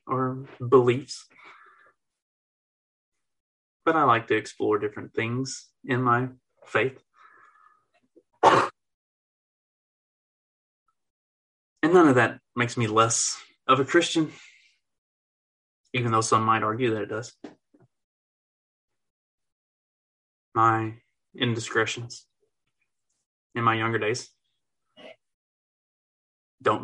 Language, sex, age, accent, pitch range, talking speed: English, male, 20-39, American, 110-135 Hz, 85 wpm